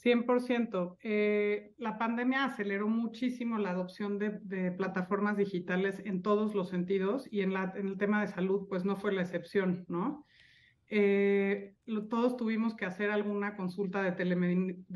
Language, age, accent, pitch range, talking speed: Spanish, 40-59, Mexican, 185-210 Hz, 160 wpm